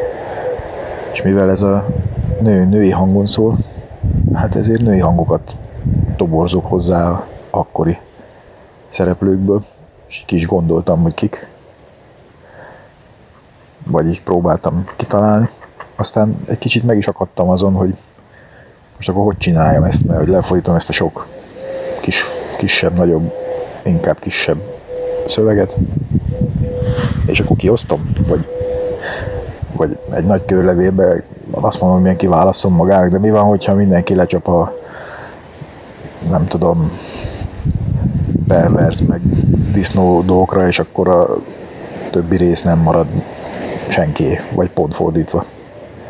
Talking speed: 115 wpm